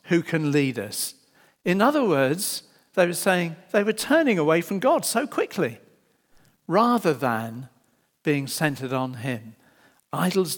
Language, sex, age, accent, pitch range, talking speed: English, male, 50-69, British, 140-225 Hz, 140 wpm